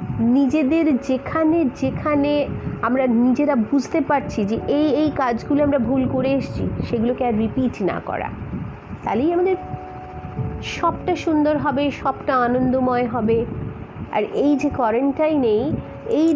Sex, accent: female, native